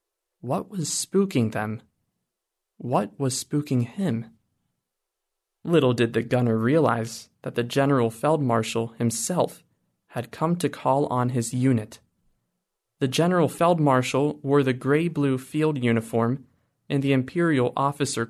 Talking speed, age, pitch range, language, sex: 120 wpm, 20-39, 120-150 Hz, English, male